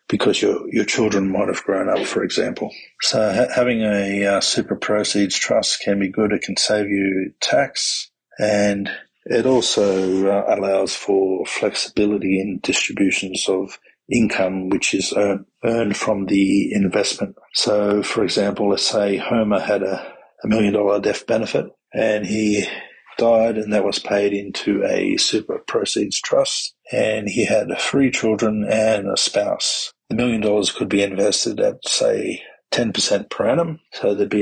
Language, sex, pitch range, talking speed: English, male, 100-110 Hz, 155 wpm